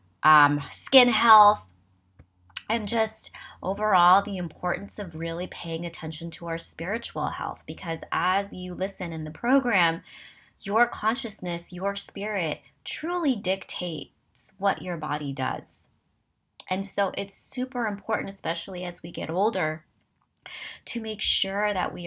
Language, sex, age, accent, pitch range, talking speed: English, female, 20-39, American, 145-195 Hz, 130 wpm